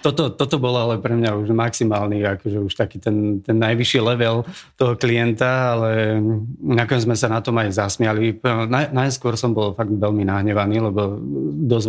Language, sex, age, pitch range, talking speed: Slovak, male, 30-49, 105-125 Hz, 170 wpm